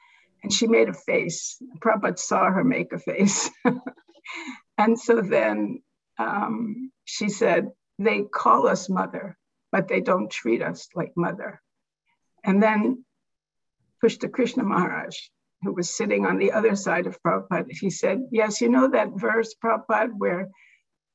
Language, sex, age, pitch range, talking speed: English, female, 60-79, 190-245 Hz, 150 wpm